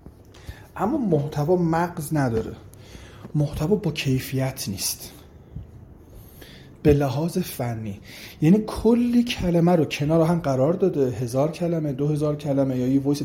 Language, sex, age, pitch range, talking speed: English, male, 30-49, 125-160 Hz, 125 wpm